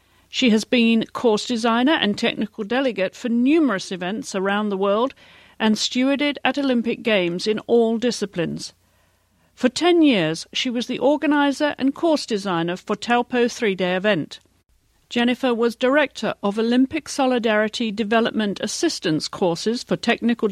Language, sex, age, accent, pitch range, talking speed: English, female, 50-69, British, 195-255 Hz, 135 wpm